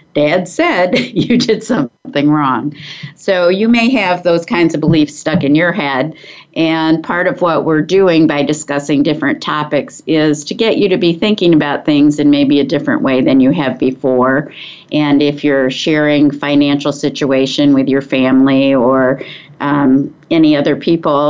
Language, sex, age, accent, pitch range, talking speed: English, female, 50-69, American, 145-180 Hz, 170 wpm